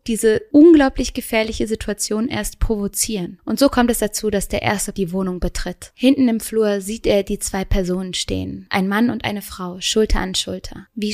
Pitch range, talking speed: 190-220 Hz, 190 wpm